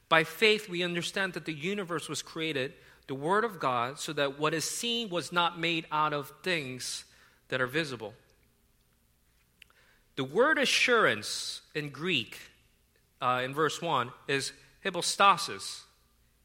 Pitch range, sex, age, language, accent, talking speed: 150-210 Hz, male, 40-59, English, American, 140 wpm